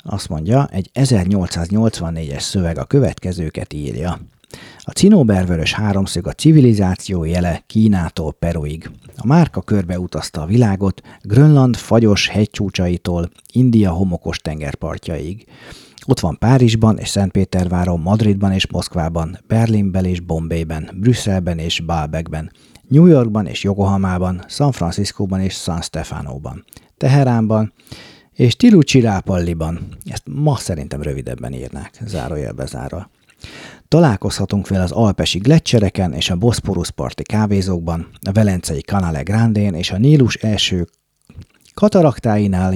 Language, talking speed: Hungarian, 110 wpm